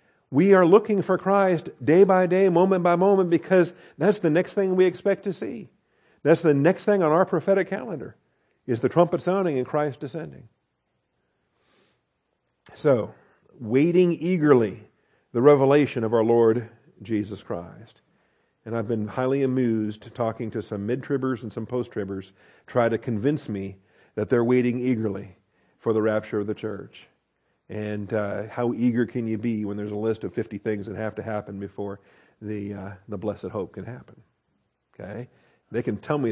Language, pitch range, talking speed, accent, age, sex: English, 105-160 Hz, 170 wpm, American, 50-69, male